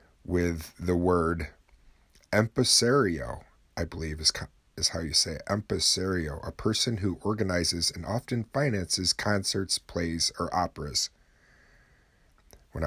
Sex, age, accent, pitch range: male, 40-59, American, 80-100 Hz